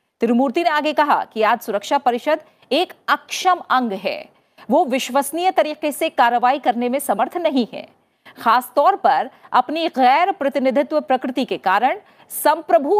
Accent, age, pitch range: native, 40-59, 235-315 Hz